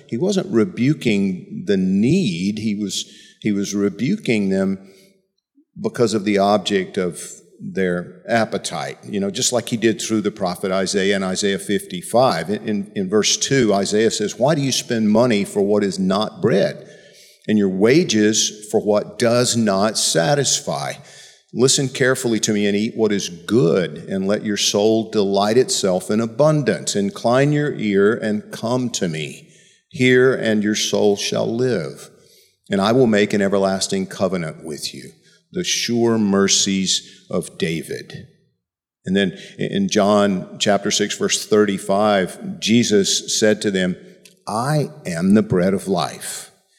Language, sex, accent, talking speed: English, male, American, 150 wpm